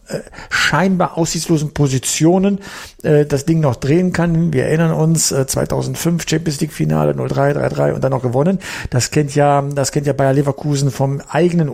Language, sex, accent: German, male, German